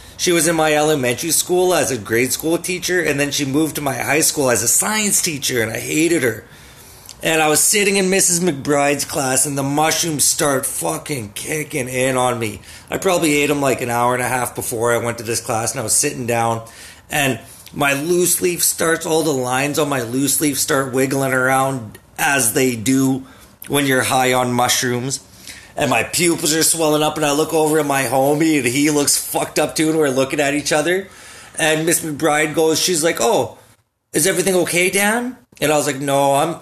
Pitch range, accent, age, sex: 125-160 Hz, American, 30-49, male